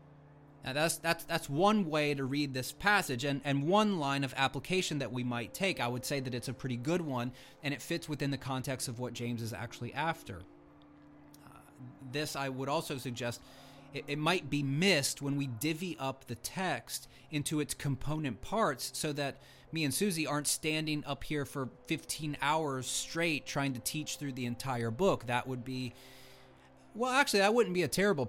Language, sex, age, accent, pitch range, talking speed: English, male, 30-49, American, 120-160 Hz, 195 wpm